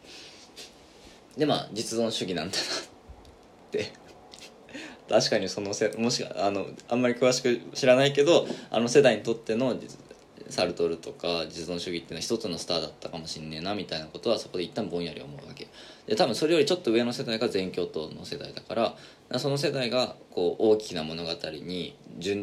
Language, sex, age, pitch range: Japanese, male, 20-39, 85-130 Hz